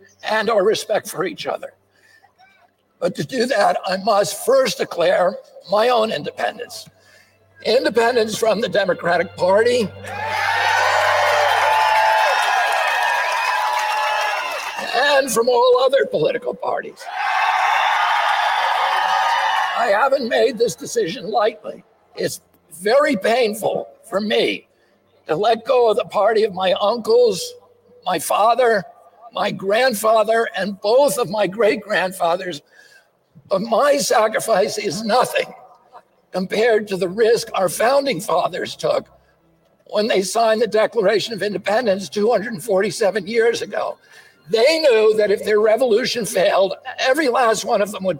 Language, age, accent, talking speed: English, 60-79, American, 115 wpm